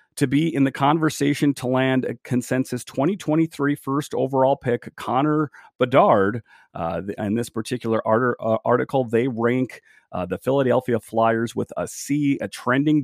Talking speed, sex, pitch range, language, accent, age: 145 wpm, male, 110-135 Hz, English, American, 40-59